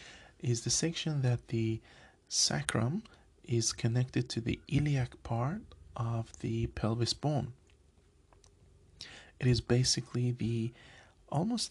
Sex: male